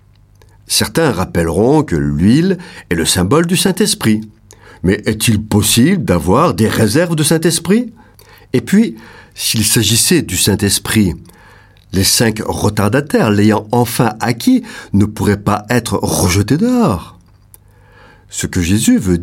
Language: French